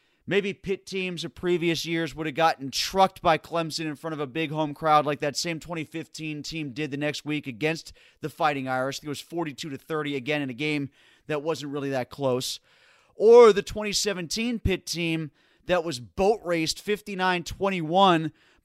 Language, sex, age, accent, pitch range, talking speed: English, male, 30-49, American, 155-195 Hz, 180 wpm